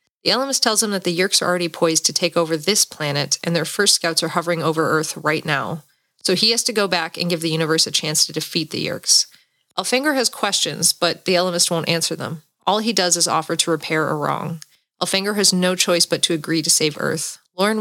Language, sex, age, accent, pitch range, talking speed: English, female, 30-49, American, 160-190 Hz, 235 wpm